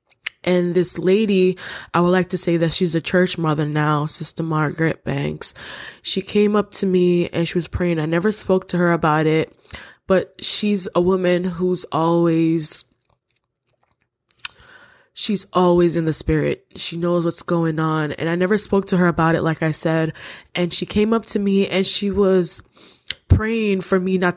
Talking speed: 180 wpm